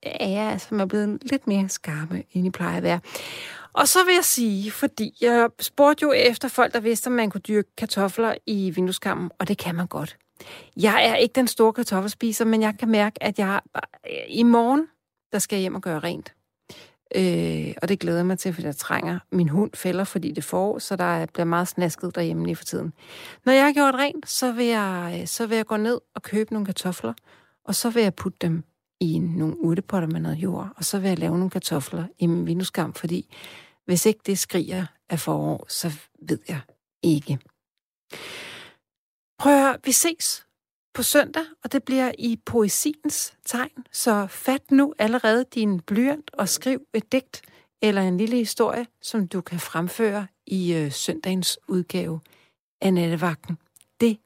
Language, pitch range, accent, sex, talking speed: Danish, 175-235 Hz, native, female, 190 wpm